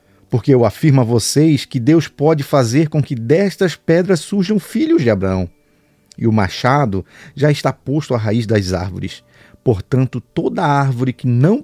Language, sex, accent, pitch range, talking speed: Portuguese, male, Brazilian, 115-155 Hz, 165 wpm